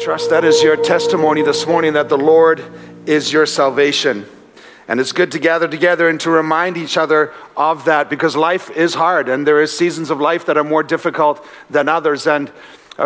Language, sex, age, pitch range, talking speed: English, male, 50-69, 145-165 Hz, 200 wpm